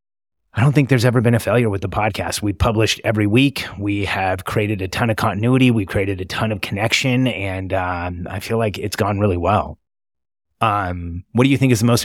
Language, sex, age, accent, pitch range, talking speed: English, male, 30-49, American, 100-115 Hz, 225 wpm